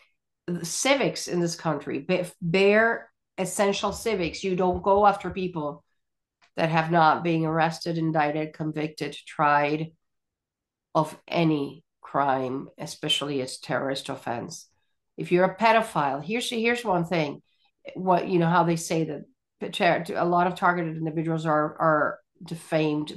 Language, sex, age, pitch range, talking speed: English, female, 50-69, 150-175 Hz, 130 wpm